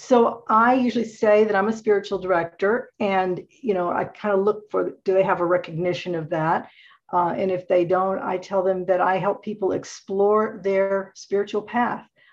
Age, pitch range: 50-69, 175-205 Hz